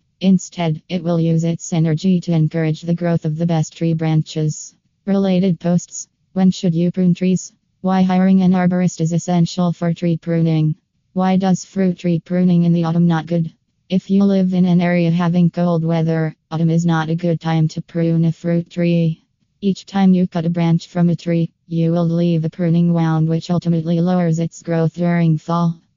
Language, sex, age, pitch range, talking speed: English, female, 20-39, 165-175 Hz, 190 wpm